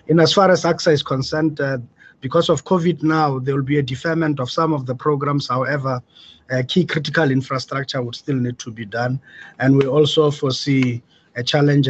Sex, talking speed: male, 195 wpm